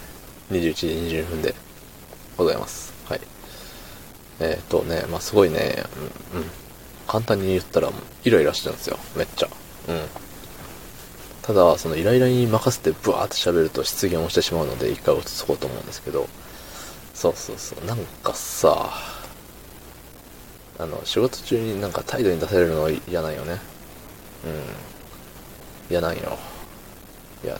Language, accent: Japanese, native